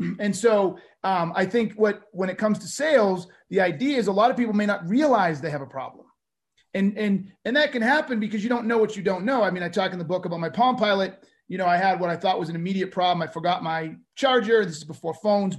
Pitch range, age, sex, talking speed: 180-220 Hz, 30-49, male, 265 wpm